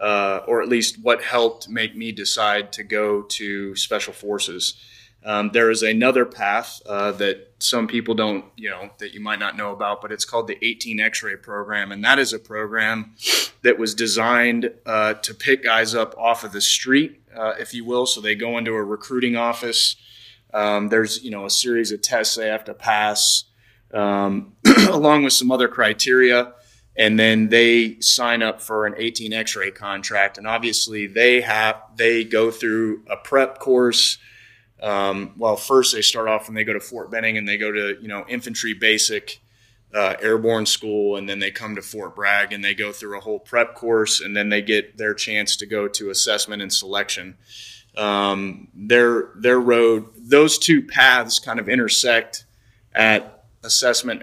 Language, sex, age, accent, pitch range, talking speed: English, male, 20-39, American, 105-115 Hz, 185 wpm